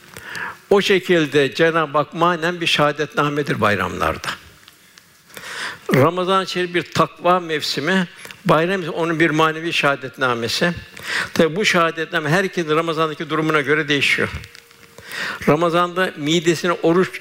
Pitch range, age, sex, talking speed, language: 145-170 Hz, 60-79, male, 100 wpm, Turkish